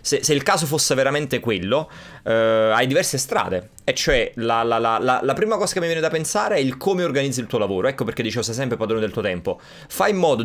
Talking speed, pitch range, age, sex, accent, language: 245 wpm, 115-150 Hz, 30-49, male, native, Italian